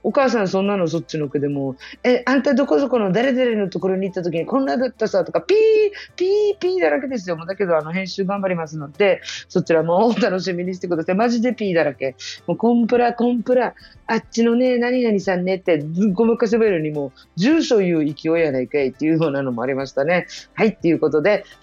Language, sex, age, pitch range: Japanese, female, 40-59, 165-230 Hz